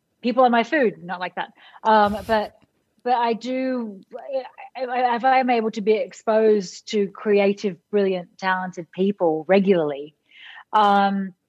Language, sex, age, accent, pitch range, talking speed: English, female, 30-49, Australian, 185-235 Hz, 135 wpm